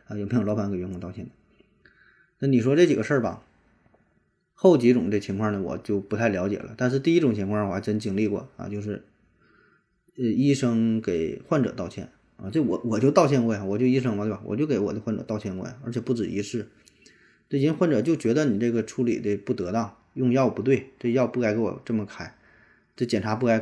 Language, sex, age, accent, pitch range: Chinese, male, 20-39, native, 105-125 Hz